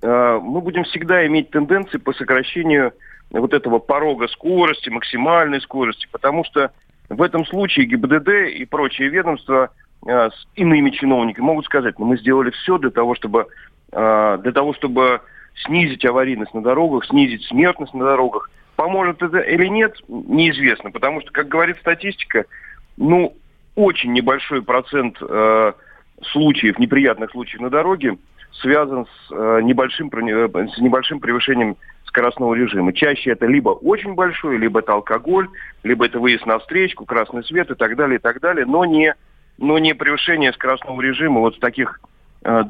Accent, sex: native, male